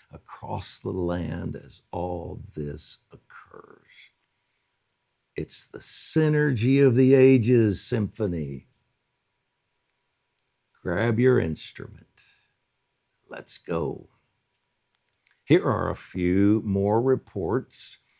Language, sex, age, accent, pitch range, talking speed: English, male, 60-79, American, 90-125 Hz, 80 wpm